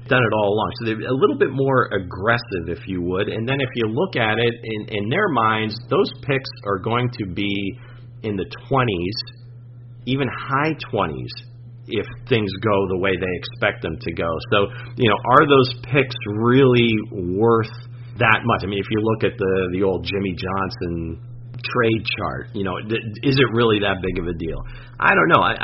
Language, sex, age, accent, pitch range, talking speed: English, male, 40-59, American, 105-125 Hz, 195 wpm